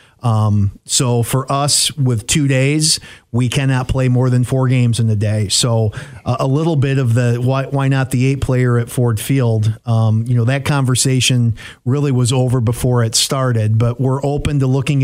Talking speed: 195 wpm